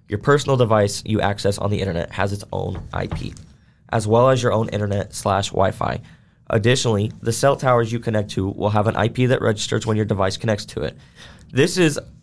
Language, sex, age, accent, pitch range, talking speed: English, male, 20-39, American, 105-130 Hz, 200 wpm